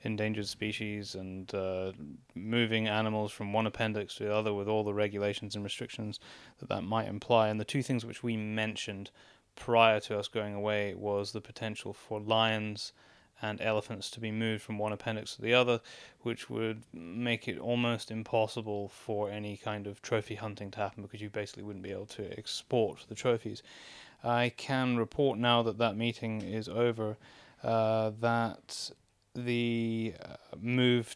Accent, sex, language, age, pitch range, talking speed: British, male, English, 20-39, 105-115 Hz, 170 wpm